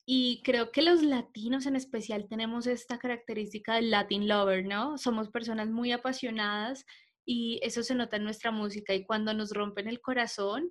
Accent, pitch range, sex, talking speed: Colombian, 215-255 Hz, female, 175 wpm